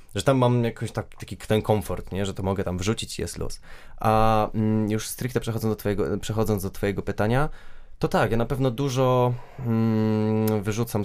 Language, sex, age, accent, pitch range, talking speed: Polish, male, 20-39, native, 95-110 Hz, 180 wpm